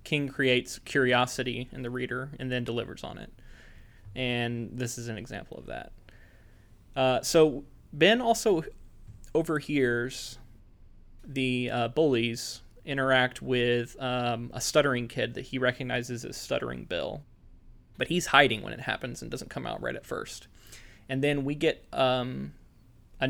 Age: 20-39